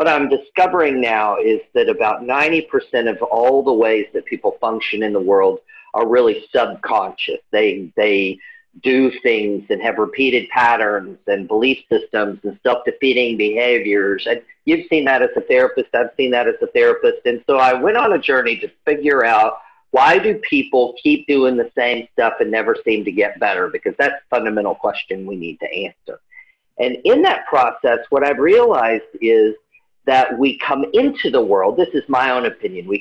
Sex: male